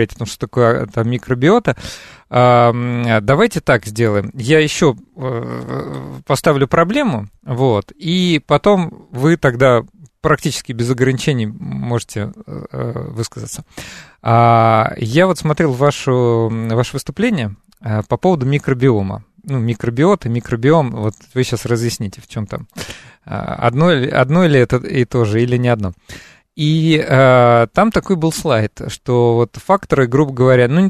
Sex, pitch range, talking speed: male, 115-155 Hz, 125 wpm